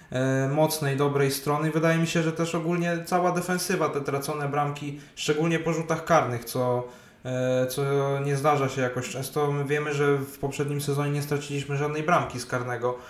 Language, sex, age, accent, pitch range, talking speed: Polish, male, 20-39, native, 130-150 Hz, 165 wpm